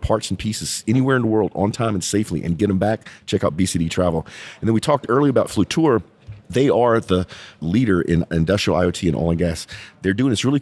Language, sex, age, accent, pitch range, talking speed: English, male, 40-59, American, 85-115 Hz, 230 wpm